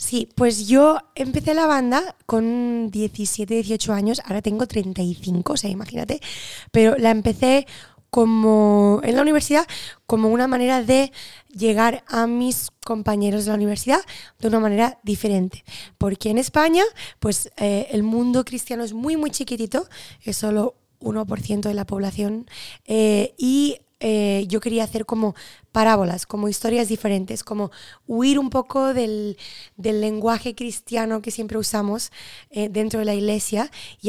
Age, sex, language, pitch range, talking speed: 20-39, female, English, 210-240 Hz, 150 wpm